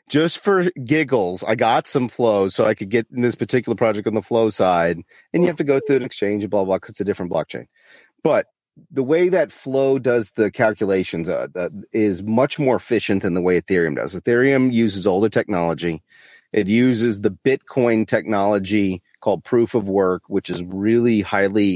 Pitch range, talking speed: 95-125 Hz, 200 wpm